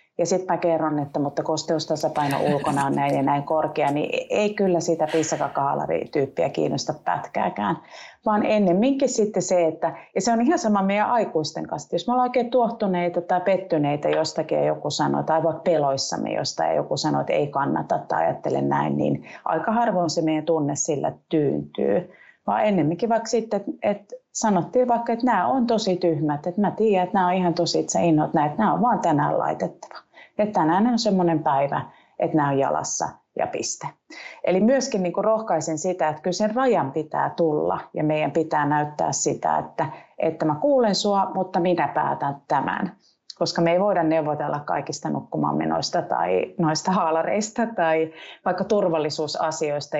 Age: 30-49